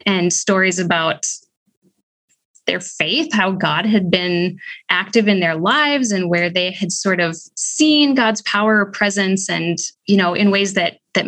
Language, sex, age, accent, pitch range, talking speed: English, female, 20-39, American, 185-240 Hz, 165 wpm